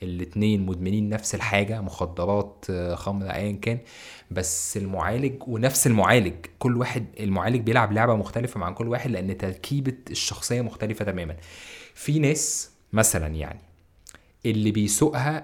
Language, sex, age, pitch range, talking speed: Arabic, male, 20-39, 100-140 Hz, 125 wpm